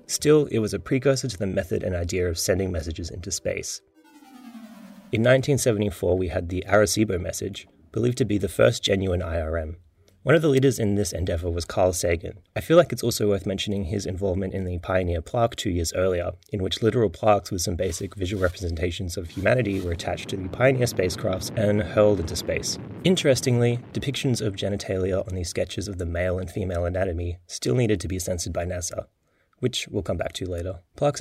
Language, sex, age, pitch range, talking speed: English, male, 30-49, 90-105 Hz, 200 wpm